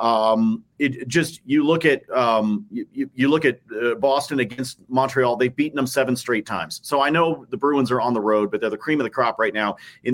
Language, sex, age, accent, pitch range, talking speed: English, male, 40-59, American, 125-155 Hz, 235 wpm